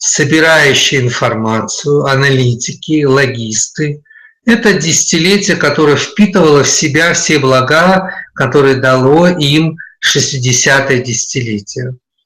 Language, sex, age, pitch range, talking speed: Russian, male, 50-69, 130-180 Hz, 85 wpm